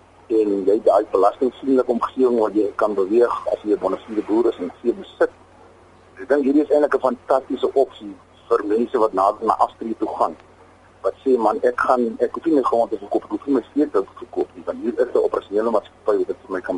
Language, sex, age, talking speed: English, male, 40-59, 230 wpm